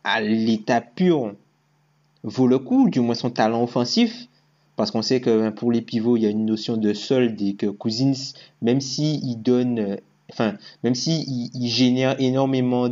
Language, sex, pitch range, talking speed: French, male, 115-140 Hz, 180 wpm